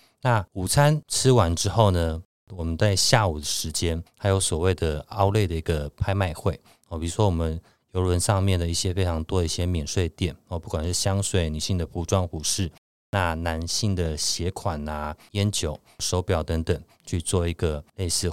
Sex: male